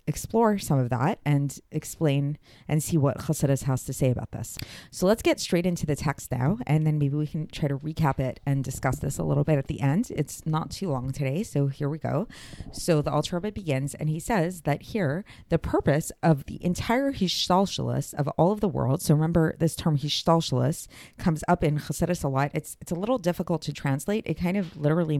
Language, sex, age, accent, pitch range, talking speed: English, female, 30-49, American, 135-170 Hz, 220 wpm